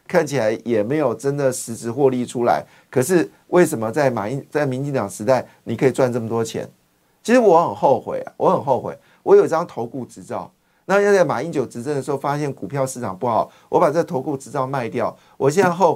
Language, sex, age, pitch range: Chinese, male, 50-69, 130-180 Hz